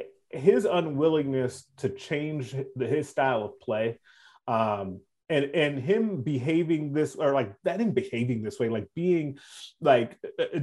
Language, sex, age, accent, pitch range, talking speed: English, male, 30-49, American, 125-170 Hz, 145 wpm